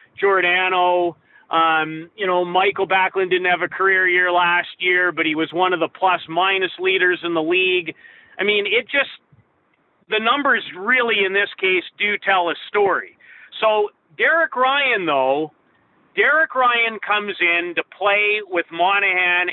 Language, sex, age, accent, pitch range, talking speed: English, male, 40-59, American, 180-250 Hz, 155 wpm